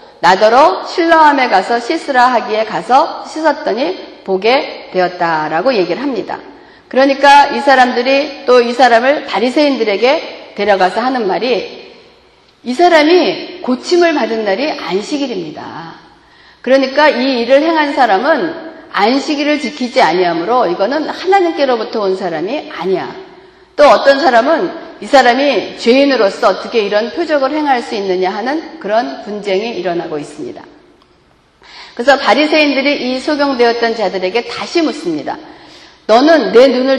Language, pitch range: Korean, 220-315 Hz